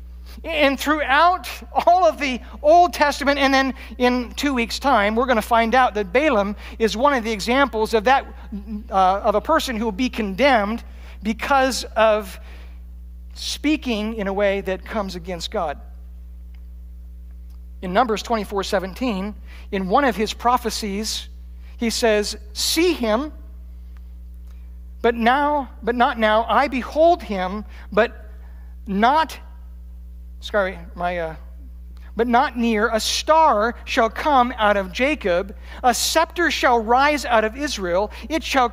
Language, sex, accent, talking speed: English, male, American, 140 wpm